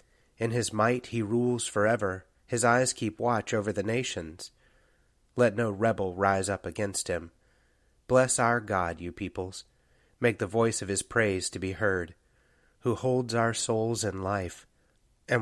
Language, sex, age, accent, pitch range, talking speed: English, male, 30-49, American, 95-115 Hz, 160 wpm